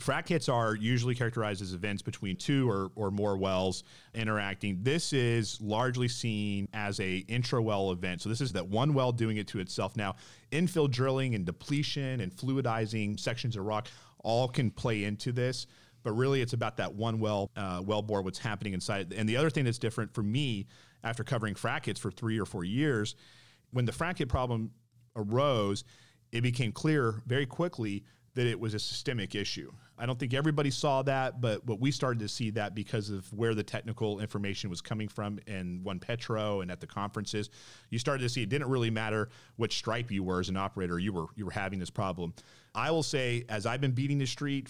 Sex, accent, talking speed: male, American, 210 wpm